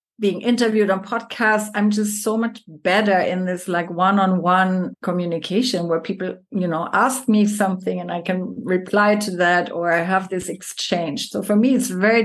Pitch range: 180-210 Hz